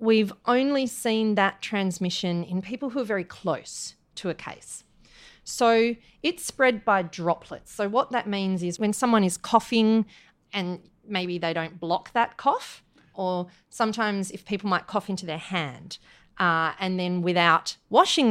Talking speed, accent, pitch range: 160 wpm, Australian, 180-235 Hz